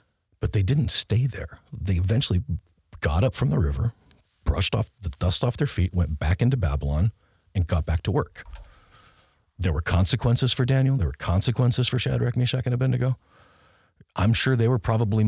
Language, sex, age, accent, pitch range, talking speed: English, male, 40-59, American, 85-110 Hz, 180 wpm